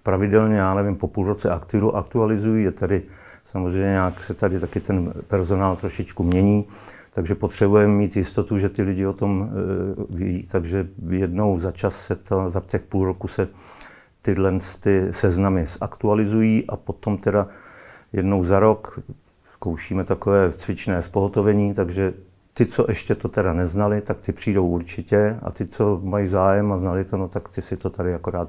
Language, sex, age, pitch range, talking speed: Czech, male, 50-69, 95-105 Hz, 170 wpm